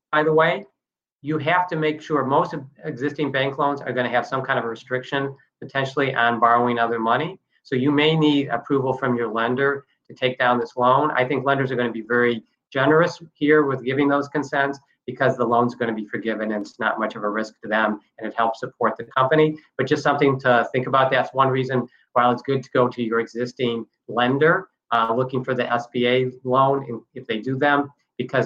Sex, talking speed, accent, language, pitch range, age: male, 225 wpm, American, English, 120-145 Hz, 40-59